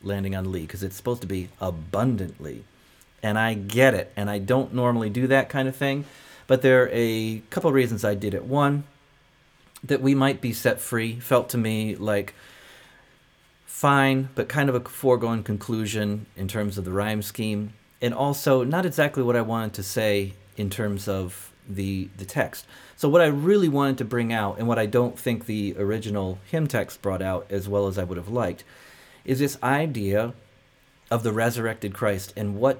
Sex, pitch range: male, 100-130 Hz